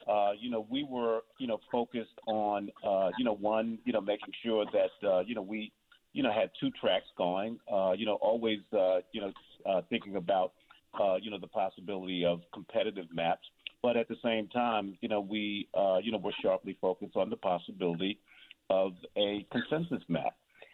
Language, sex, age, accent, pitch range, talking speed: English, male, 40-59, American, 95-110 Hz, 170 wpm